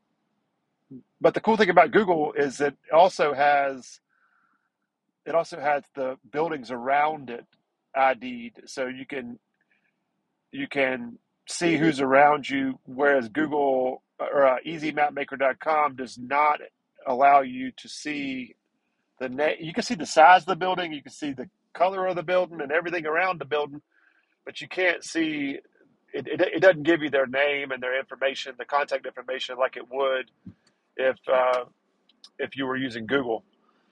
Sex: male